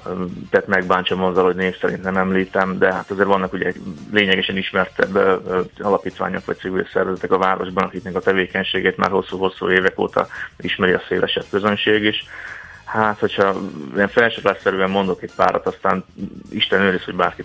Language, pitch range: Hungarian, 90-95 Hz